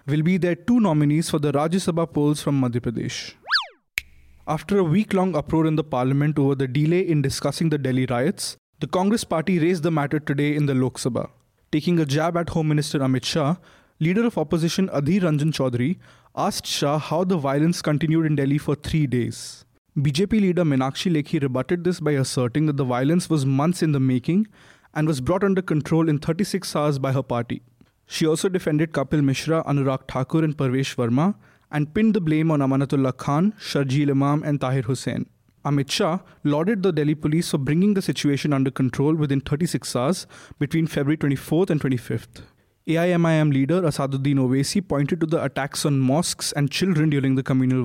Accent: Indian